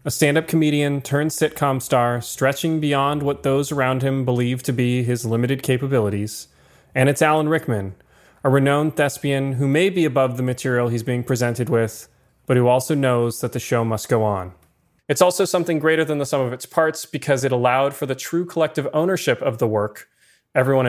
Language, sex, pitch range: English, male, 125-150 Hz